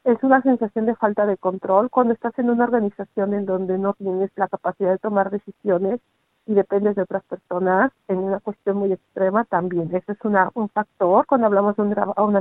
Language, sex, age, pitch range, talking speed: Spanish, female, 50-69, 195-230 Hz, 200 wpm